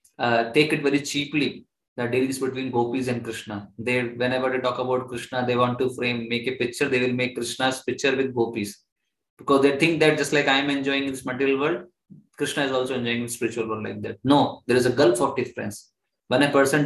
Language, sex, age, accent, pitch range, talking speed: English, male, 20-39, Indian, 120-145 Hz, 225 wpm